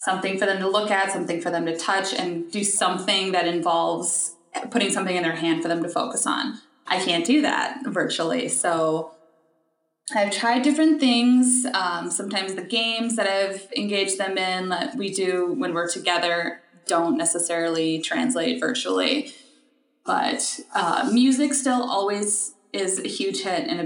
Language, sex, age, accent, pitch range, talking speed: English, female, 20-39, American, 175-235 Hz, 165 wpm